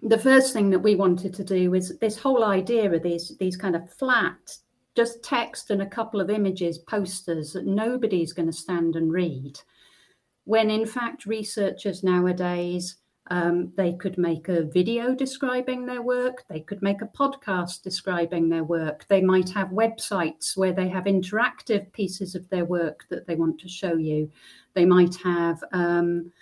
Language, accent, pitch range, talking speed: English, British, 170-210 Hz, 175 wpm